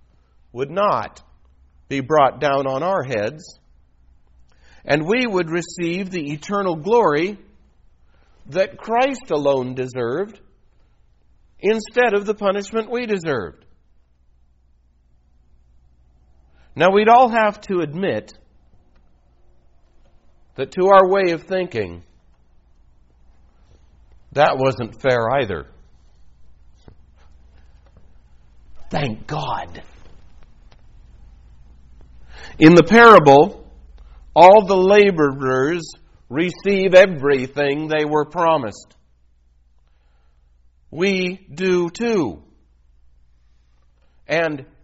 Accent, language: American, English